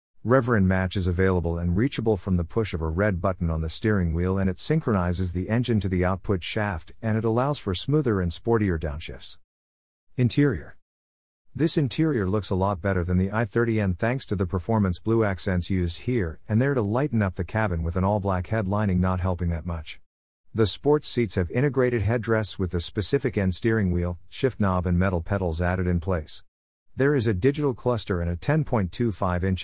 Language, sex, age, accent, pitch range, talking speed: English, male, 50-69, American, 90-115 Hz, 190 wpm